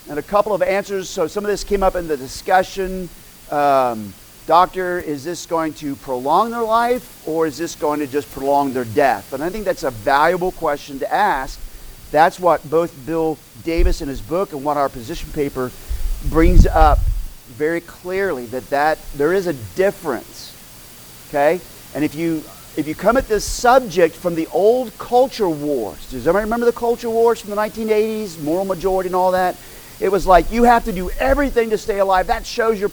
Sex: male